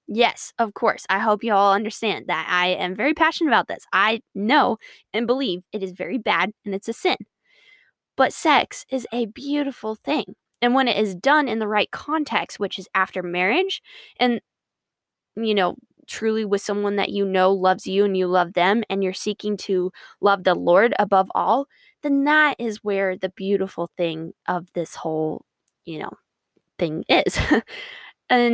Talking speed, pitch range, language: 180 wpm, 185-240 Hz, English